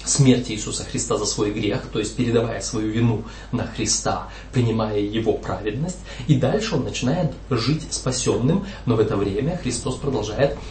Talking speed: 155 wpm